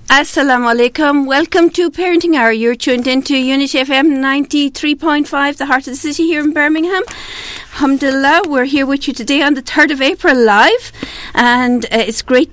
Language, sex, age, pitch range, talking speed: English, female, 50-69, 225-280 Hz, 175 wpm